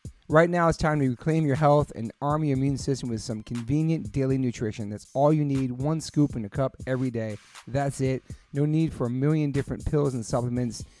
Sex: male